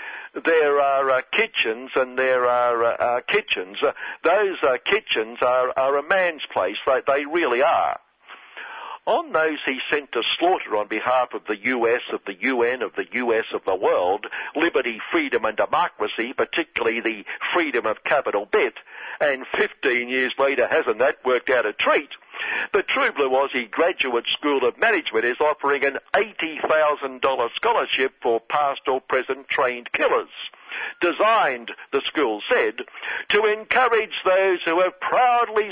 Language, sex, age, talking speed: English, male, 60-79, 155 wpm